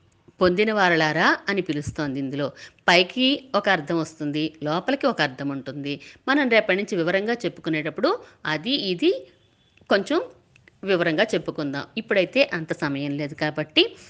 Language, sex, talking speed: Telugu, female, 115 wpm